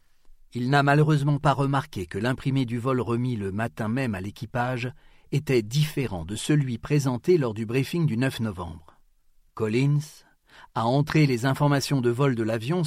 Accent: French